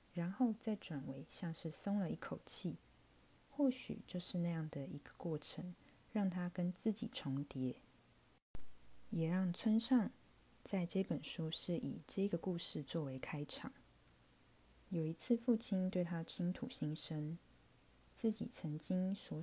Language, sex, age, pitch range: Chinese, female, 20-39, 150-190 Hz